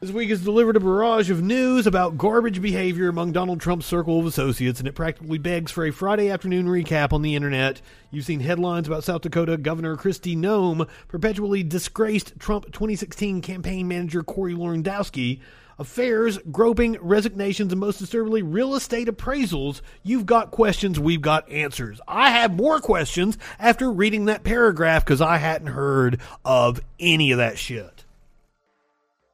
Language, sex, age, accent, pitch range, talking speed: English, male, 30-49, American, 165-230 Hz, 160 wpm